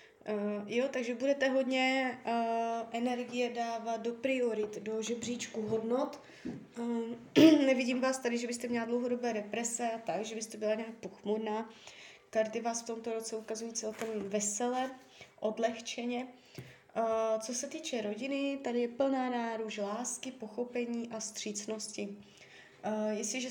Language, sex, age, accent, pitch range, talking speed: Czech, female, 20-39, native, 220-245 Hz, 130 wpm